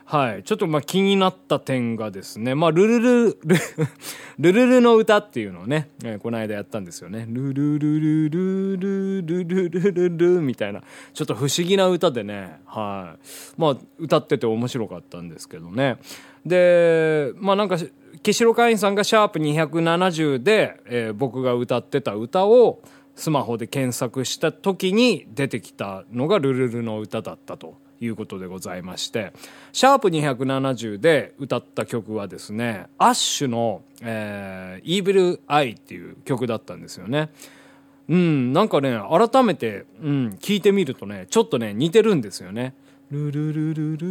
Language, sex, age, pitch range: Japanese, male, 20-39, 115-190 Hz